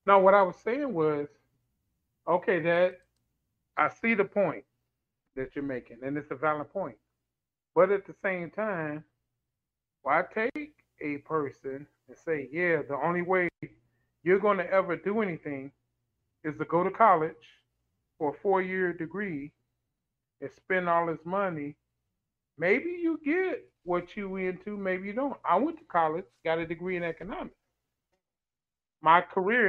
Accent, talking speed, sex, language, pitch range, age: American, 155 wpm, male, English, 145-190 Hz, 30-49